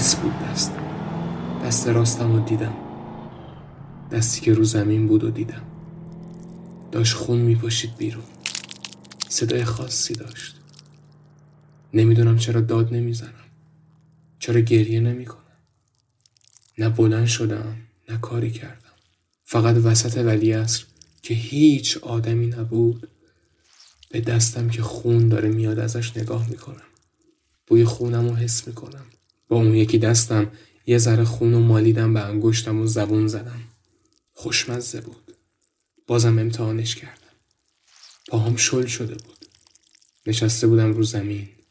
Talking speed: 120 wpm